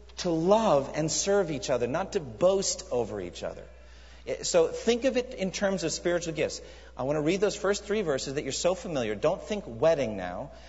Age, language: 40-59, English